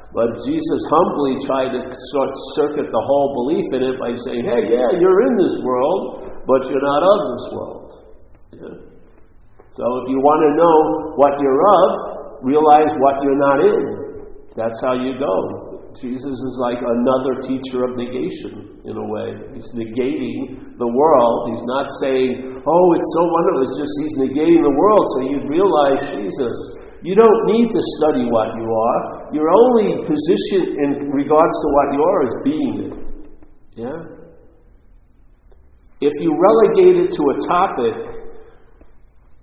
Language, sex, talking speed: English, male, 155 wpm